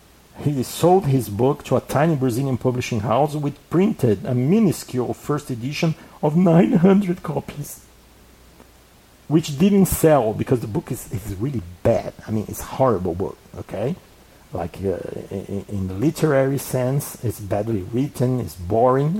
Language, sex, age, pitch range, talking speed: English, male, 50-69, 105-145 Hz, 145 wpm